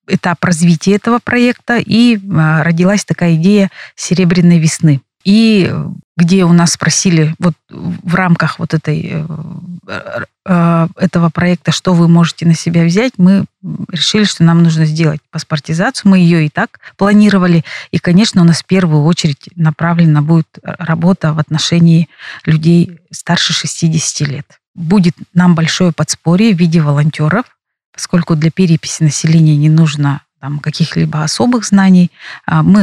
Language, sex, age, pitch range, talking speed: Russian, female, 30-49, 155-185 Hz, 130 wpm